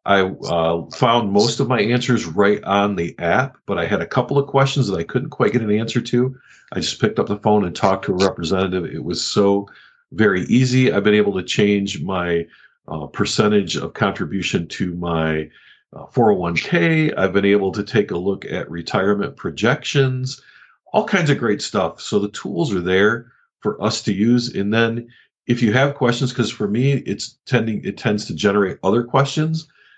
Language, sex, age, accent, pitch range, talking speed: English, male, 40-59, American, 100-130 Hz, 195 wpm